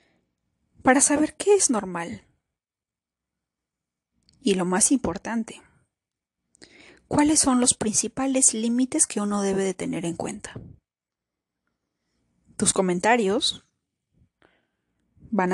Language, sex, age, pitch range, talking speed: Spanish, female, 30-49, 135-215 Hz, 95 wpm